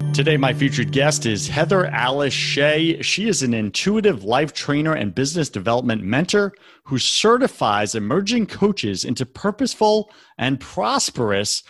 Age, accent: 40-59, American